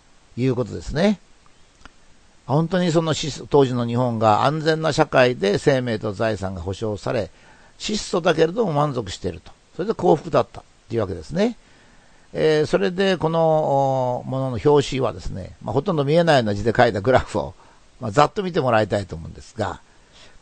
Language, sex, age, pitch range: Japanese, male, 60-79, 115-165 Hz